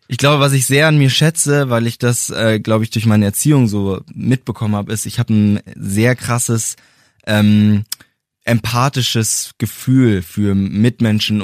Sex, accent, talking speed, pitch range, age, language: male, German, 165 wpm, 105-130 Hz, 20-39, German